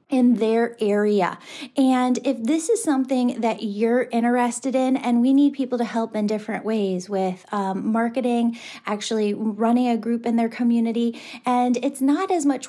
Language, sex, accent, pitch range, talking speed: English, female, American, 215-255 Hz, 170 wpm